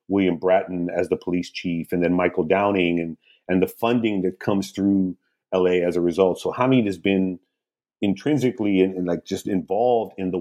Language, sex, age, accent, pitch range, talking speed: English, male, 40-59, American, 90-115 Hz, 195 wpm